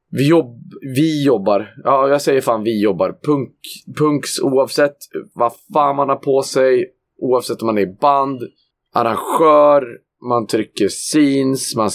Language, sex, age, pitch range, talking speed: Swedish, male, 20-39, 115-145 Hz, 135 wpm